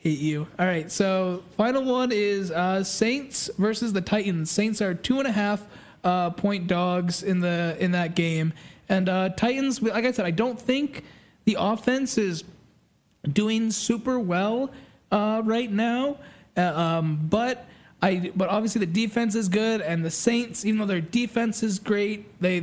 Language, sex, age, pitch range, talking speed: English, male, 20-39, 175-210 Hz, 170 wpm